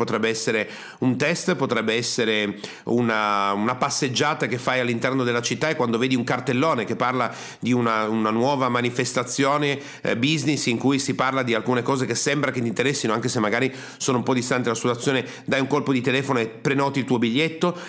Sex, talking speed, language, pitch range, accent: male, 200 wpm, Italian, 120-160 Hz, native